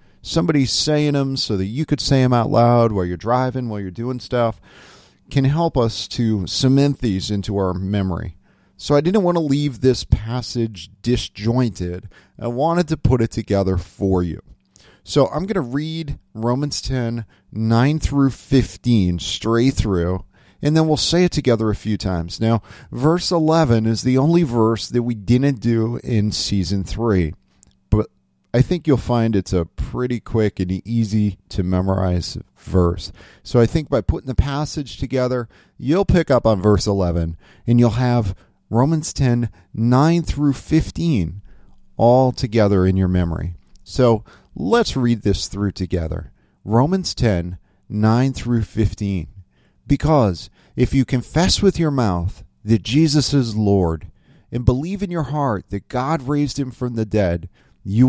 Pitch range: 95-135 Hz